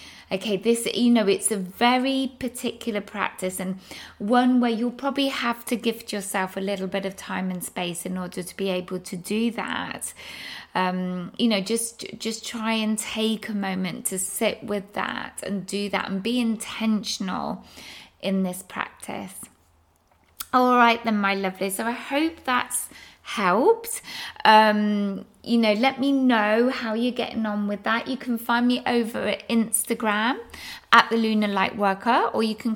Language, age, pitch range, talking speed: English, 20-39, 195-235 Hz, 170 wpm